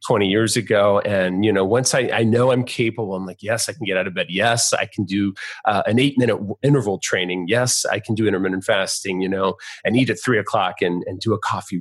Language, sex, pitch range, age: English, male, 100-125 Hz, 30-49